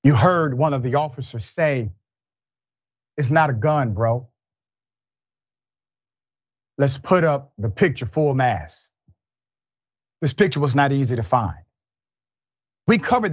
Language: English